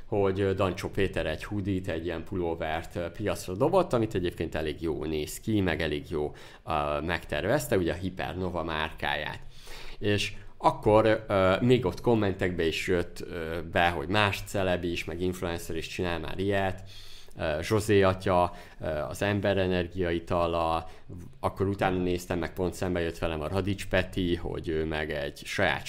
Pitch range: 85-105 Hz